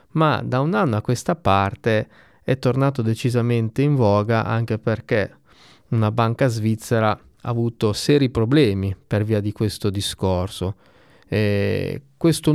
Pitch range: 110-150 Hz